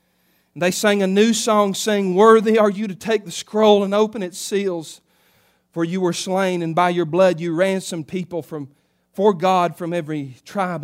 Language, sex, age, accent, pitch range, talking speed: English, male, 40-59, American, 170-245 Hz, 190 wpm